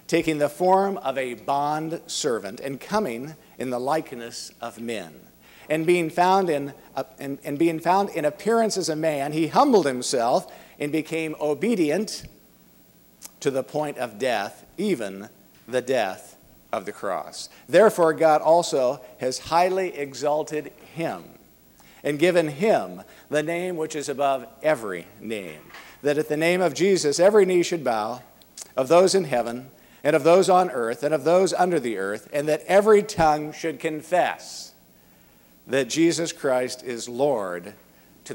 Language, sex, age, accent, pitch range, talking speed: English, male, 50-69, American, 100-160 Hz, 155 wpm